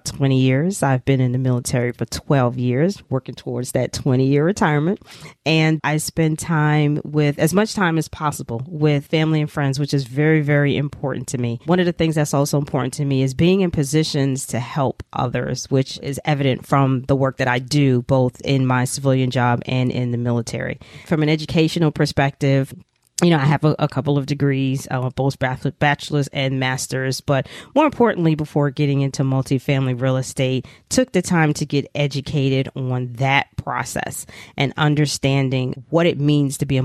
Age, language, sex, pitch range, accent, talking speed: 40-59, English, female, 130-150 Hz, American, 190 wpm